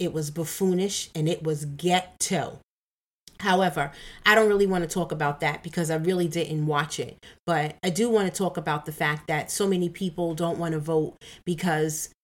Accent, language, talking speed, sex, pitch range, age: American, English, 195 wpm, female, 170-205 Hz, 40-59